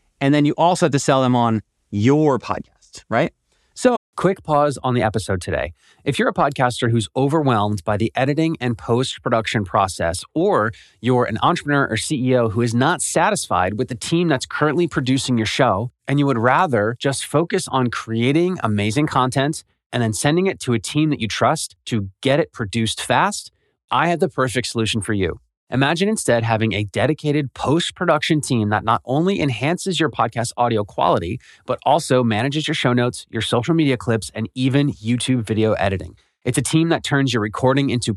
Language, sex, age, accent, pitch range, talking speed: English, male, 30-49, American, 110-145 Hz, 185 wpm